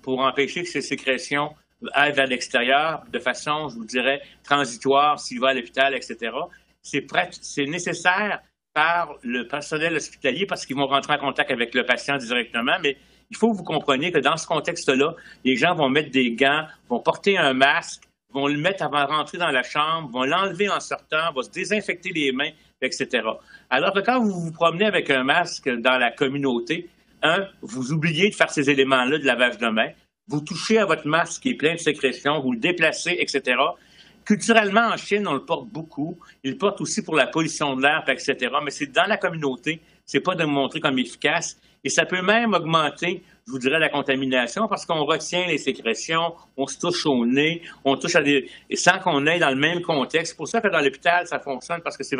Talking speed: 215 wpm